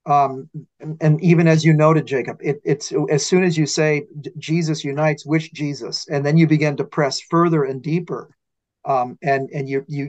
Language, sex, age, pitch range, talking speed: English, male, 40-59, 150-220 Hz, 195 wpm